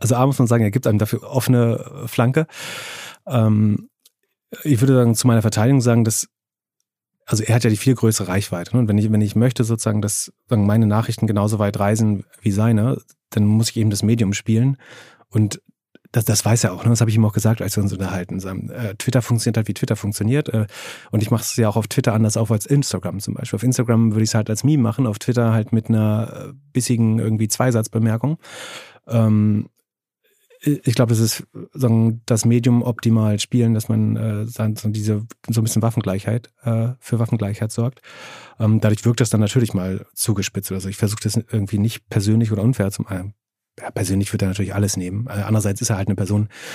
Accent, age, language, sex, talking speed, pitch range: German, 30-49, German, male, 205 wpm, 105-120 Hz